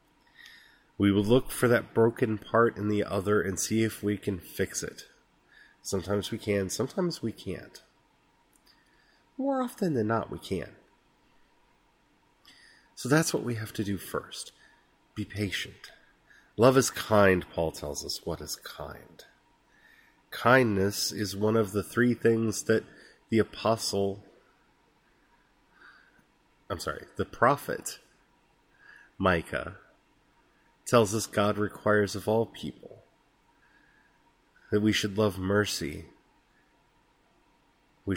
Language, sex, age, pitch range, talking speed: English, male, 30-49, 95-115 Hz, 120 wpm